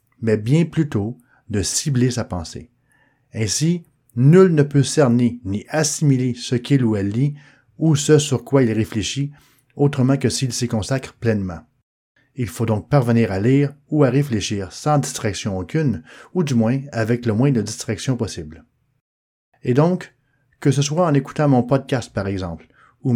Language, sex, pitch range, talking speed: English, male, 110-140 Hz, 165 wpm